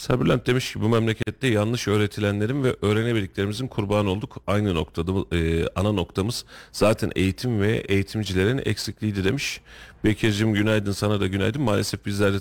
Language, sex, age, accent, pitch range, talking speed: Turkish, male, 40-59, native, 95-125 Hz, 140 wpm